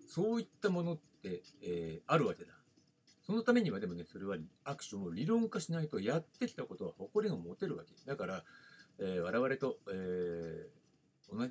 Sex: male